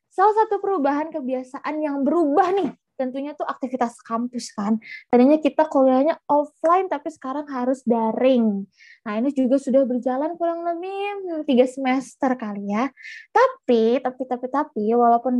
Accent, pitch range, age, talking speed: native, 240-335 Hz, 20-39, 140 wpm